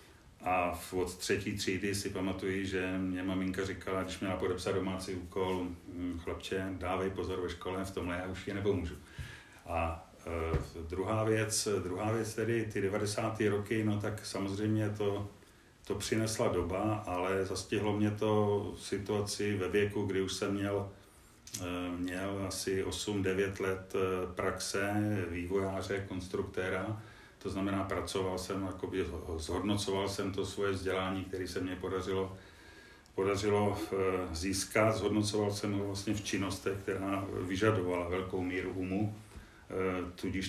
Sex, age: male, 40-59